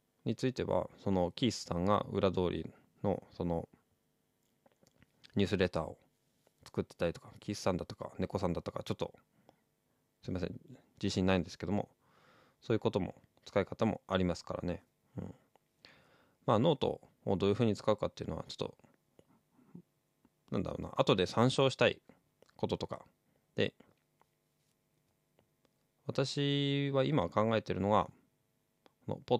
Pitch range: 95-135 Hz